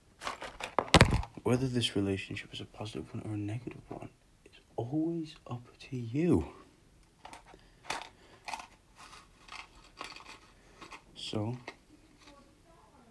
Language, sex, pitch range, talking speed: English, male, 95-120 Hz, 80 wpm